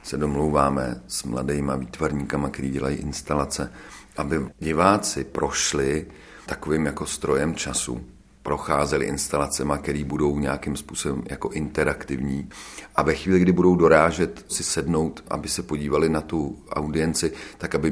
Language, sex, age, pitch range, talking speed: Czech, male, 40-59, 70-80 Hz, 130 wpm